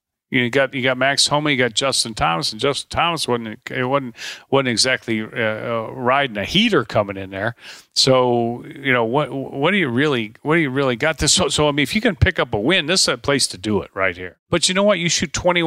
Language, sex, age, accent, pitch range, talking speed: English, male, 50-69, American, 115-150 Hz, 255 wpm